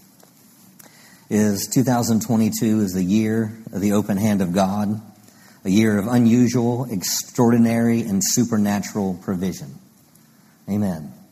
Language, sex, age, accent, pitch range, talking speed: English, male, 50-69, American, 115-140 Hz, 105 wpm